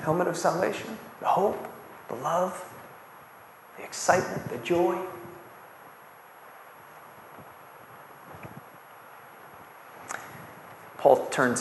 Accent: American